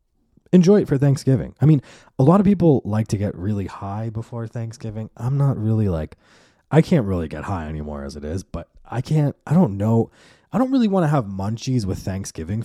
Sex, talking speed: male, 215 wpm